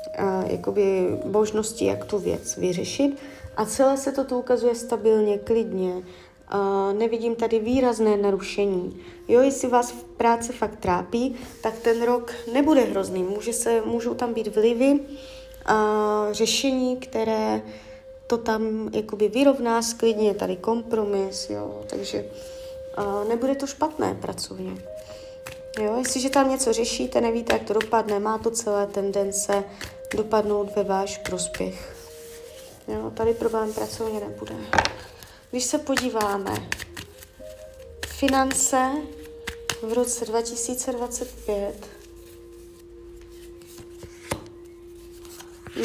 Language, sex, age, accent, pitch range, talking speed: Czech, female, 20-39, native, 185-255 Hz, 100 wpm